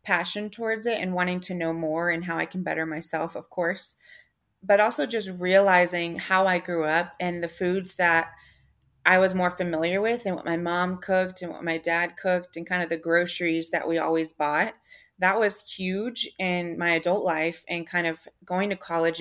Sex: female